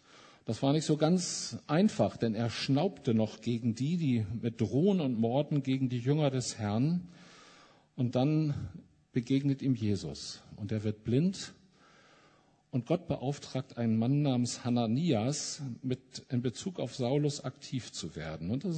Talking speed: 155 wpm